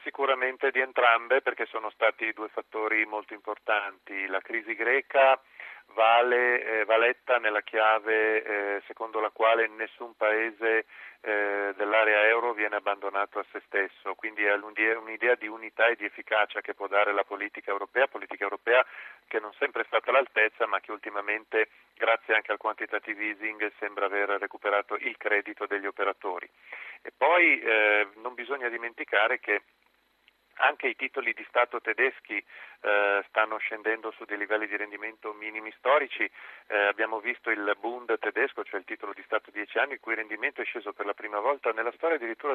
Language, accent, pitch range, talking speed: Italian, native, 105-120 Hz, 165 wpm